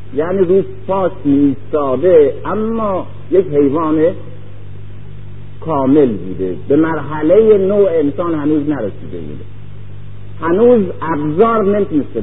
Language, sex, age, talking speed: Persian, male, 50-69, 90 wpm